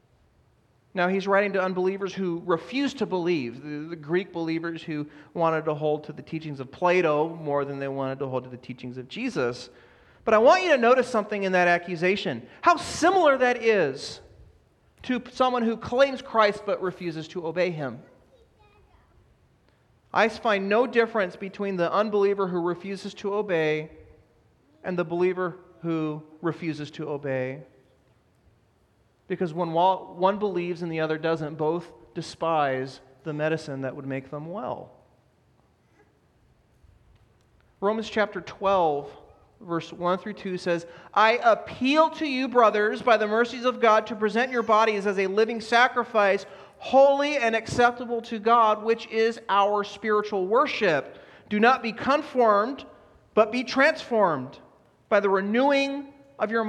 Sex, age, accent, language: male, 40-59, American, English